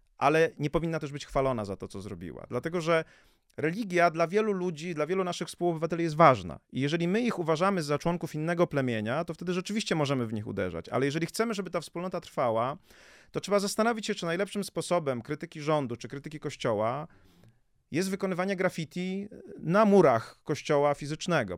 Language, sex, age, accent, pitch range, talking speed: Polish, male, 30-49, native, 140-180 Hz, 180 wpm